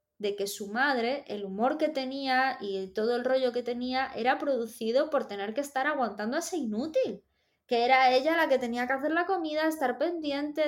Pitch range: 220-275 Hz